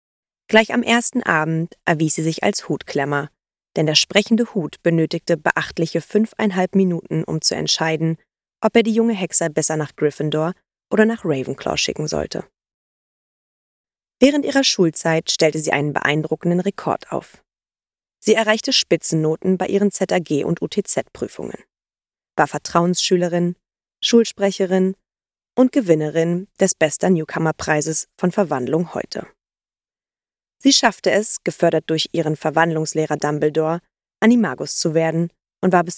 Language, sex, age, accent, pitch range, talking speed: German, female, 20-39, German, 160-205 Hz, 125 wpm